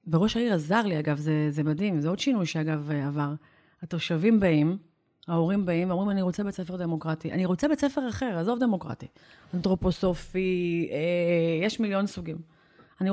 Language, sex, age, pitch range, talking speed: Hebrew, female, 30-49, 170-225 Hz, 155 wpm